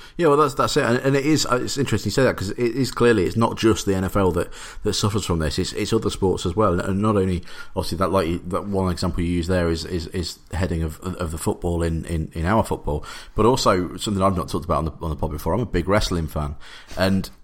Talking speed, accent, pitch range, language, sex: 275 wpm, British, 80-105 Hz, English, male